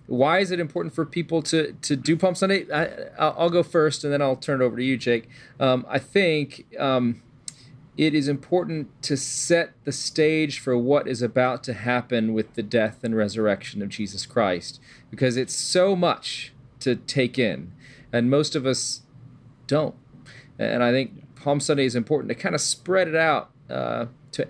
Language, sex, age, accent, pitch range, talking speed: English, male, 30-49, American, 115-145 Hz, 185 wpm